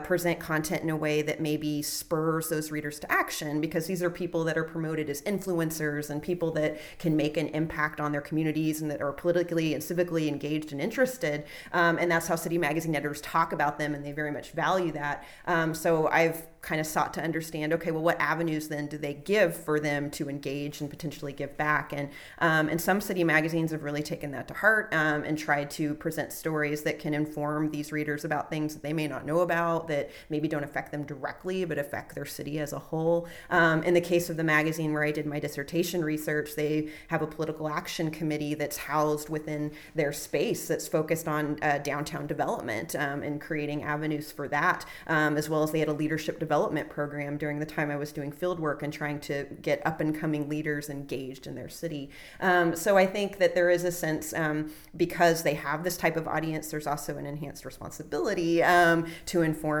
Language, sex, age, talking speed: English, female, 30-49, 210 wpm